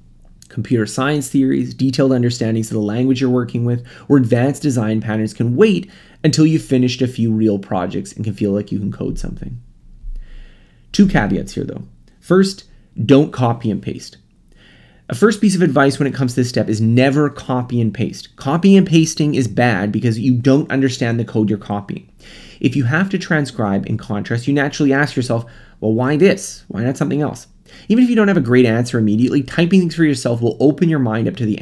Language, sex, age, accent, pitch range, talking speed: English, male, 30-49, American, 110-150 Hz, 205 wpm